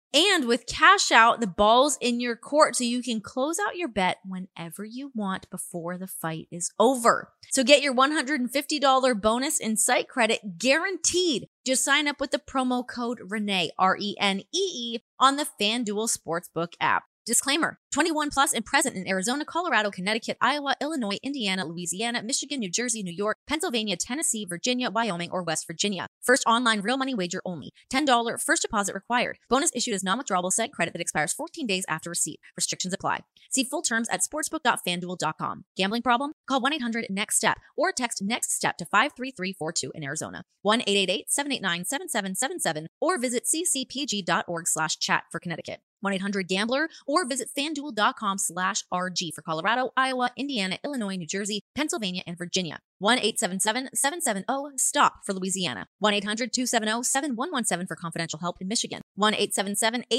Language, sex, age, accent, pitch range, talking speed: English, female, 20-39, American, 185-265 Hz, 160 wpm